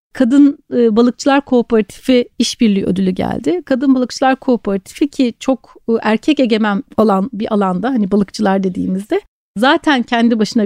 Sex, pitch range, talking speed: female, 210-260 Hz, 125 wpm